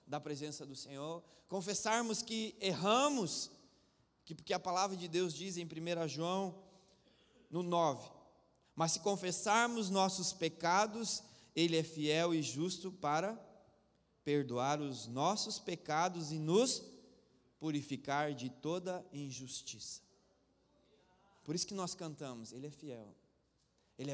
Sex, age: male, 20-39